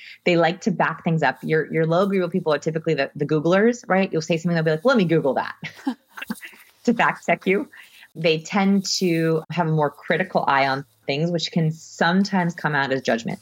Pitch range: 145-195 Hz